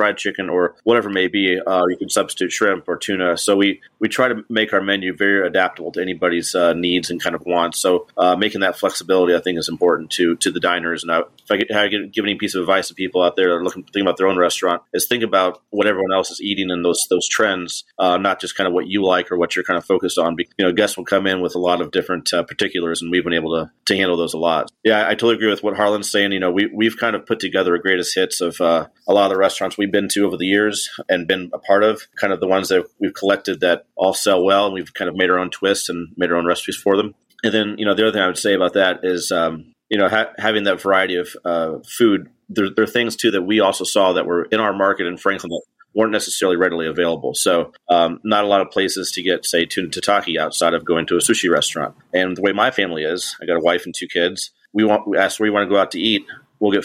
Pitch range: 90-100 Hz